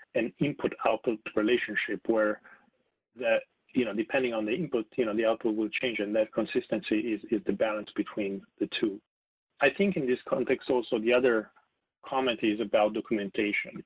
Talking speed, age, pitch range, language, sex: 170 wpm, 40-59, 110-125 Hz, English, male